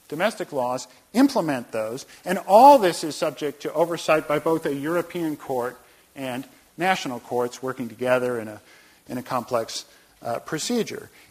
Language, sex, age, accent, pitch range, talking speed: English, male, 50-69, American, 125-185 Hz, 150 wpm